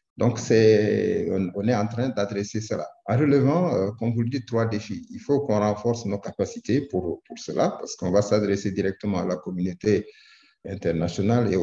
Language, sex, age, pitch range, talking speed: English, male, 50-69, 95-120 Hz, 185 wpm